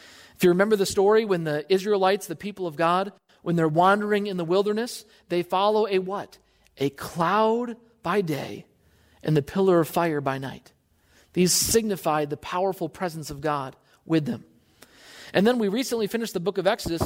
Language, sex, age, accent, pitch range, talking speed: English, male, 40-59, American, 170-220 Hz, 180 wpm